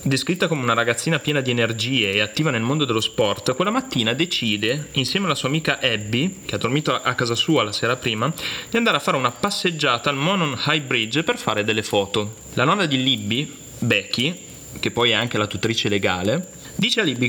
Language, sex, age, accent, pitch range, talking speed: Italian, male, 30-49, native, 110-155 Hz, 205 wpm